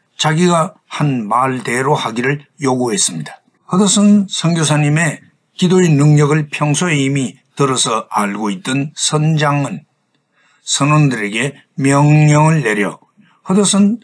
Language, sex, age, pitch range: Korean, male, 60-79, 135-180 Hz